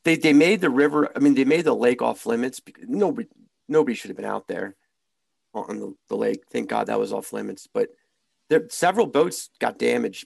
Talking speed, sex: 210 wpm, male